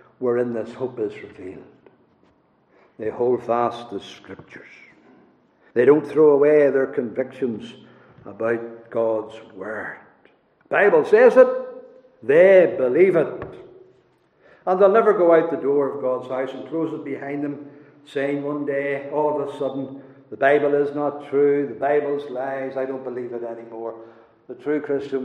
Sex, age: male, 60-79